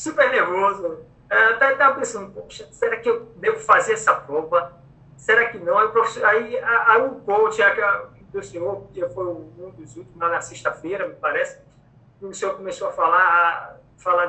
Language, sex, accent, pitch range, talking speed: Portuguese, male, Brazilian, 175-275 Hz, 170 wpm